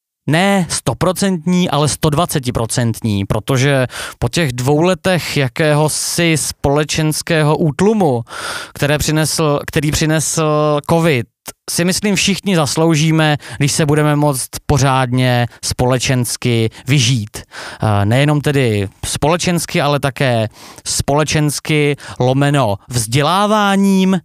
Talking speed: 85 wpm